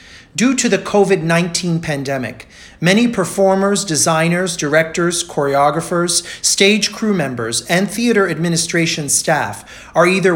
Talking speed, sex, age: 110 wpm, male, 40-59